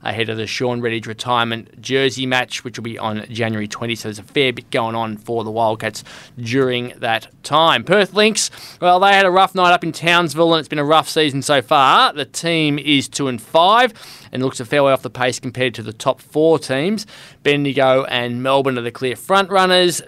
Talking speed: 220 wpm